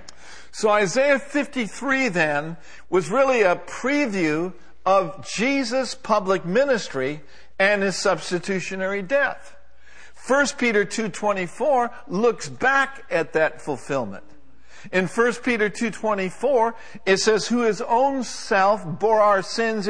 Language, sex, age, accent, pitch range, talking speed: English, male, 60-79, American, 170-240 Hz, 110 wpm